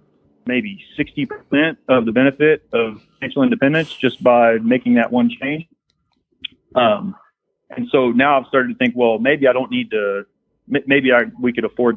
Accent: American